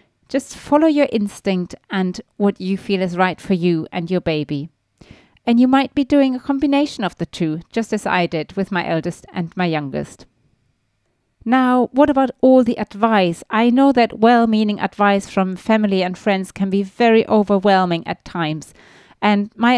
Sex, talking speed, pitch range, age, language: female, 175 wpm, 180-230 Hz, 30-49, English